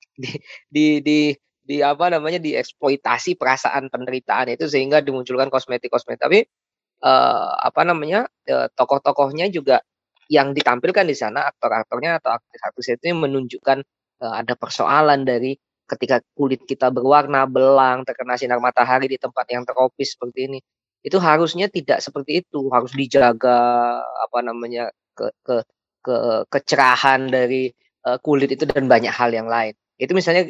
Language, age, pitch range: Indonesian, 20-39, 125-155 Hz